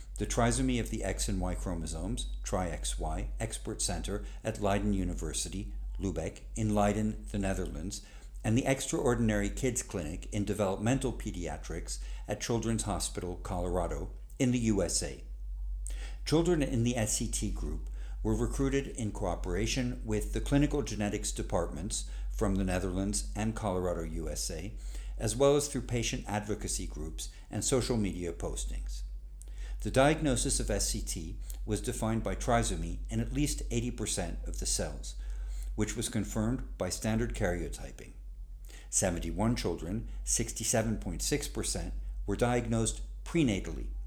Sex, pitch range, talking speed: male, 80-115 Hz, 125 wpm